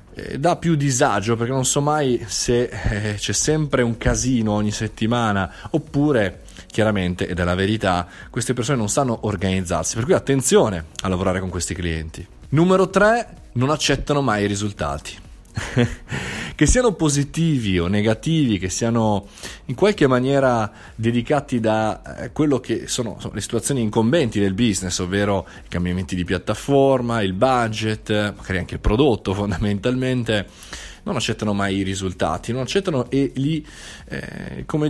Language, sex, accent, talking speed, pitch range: Italian, male, native, 145 wpm, 100-135 Hz